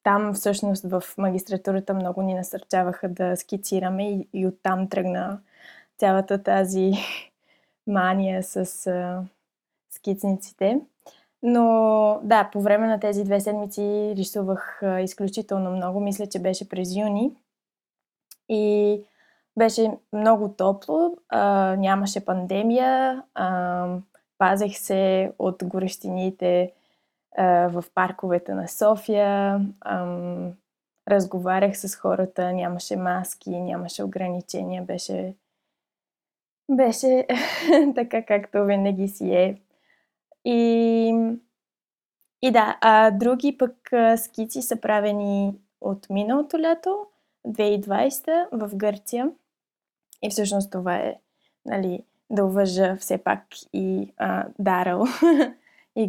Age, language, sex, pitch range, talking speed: 20-39, Bulgarian, female, 185-220 Hz, 105 wpm